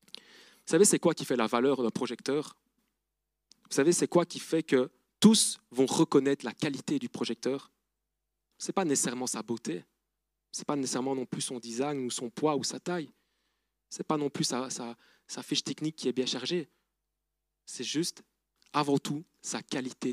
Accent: French